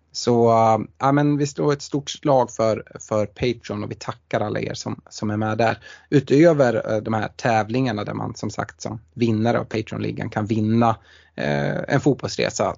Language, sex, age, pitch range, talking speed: Swedish, male, 20-39, 105-125 Hz, 185 wpm